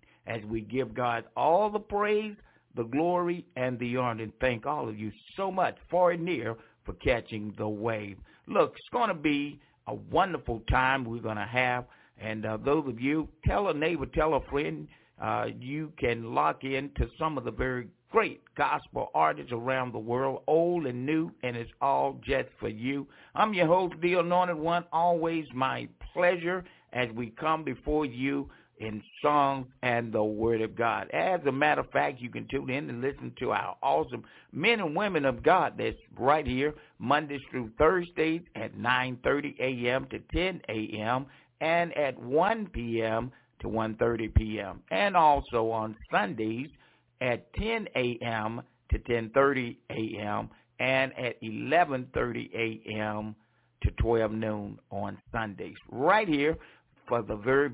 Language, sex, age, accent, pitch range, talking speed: English, male, 60-79, American, 115-150 Hz, 165 wpm